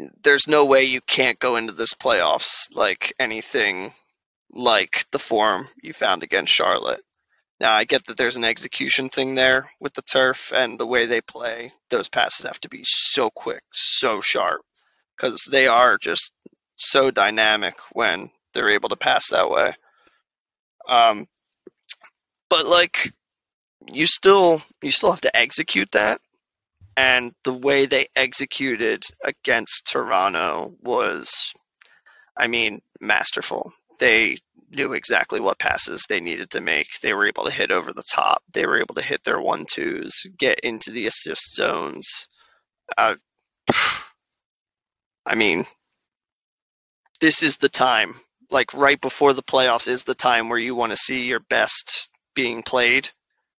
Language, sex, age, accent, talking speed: English, male, 20-39, American, 150 wpm